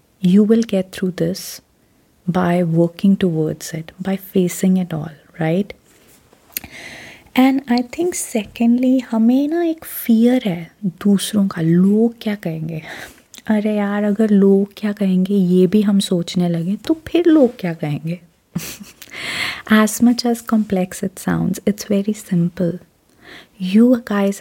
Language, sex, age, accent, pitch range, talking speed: Hindi, female, 30-49, native, 175-210 Hz, 135 wpm